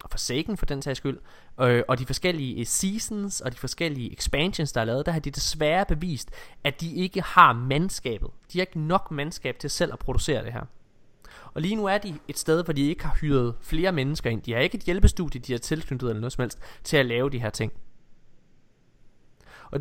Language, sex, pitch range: Danish, male, 125-165 Hz